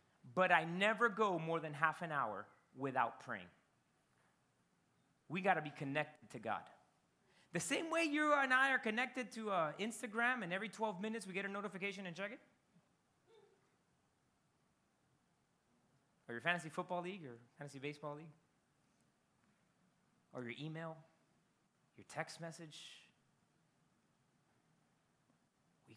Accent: American